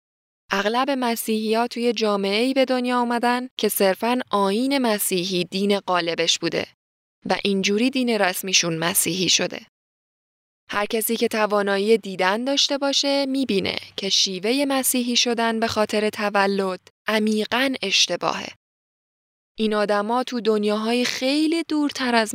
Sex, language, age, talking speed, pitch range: female, Persian, 10-29, 125 wpm, 185-230 Hz